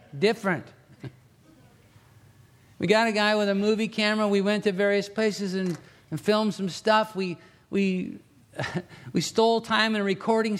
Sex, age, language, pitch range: male, 50-69, English, 160-205 Hz